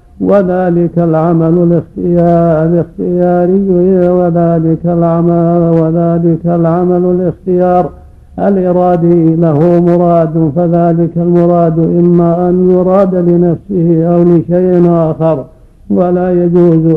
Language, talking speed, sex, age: Arabic, 75 wpm, male, 50-69